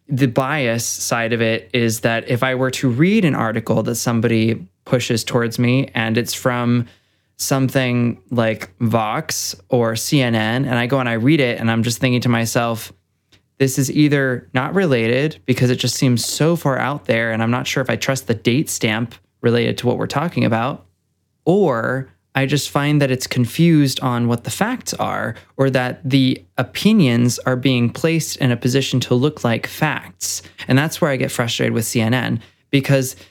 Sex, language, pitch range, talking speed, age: male, English, 115-135 Hz, 185 wpm, 20-39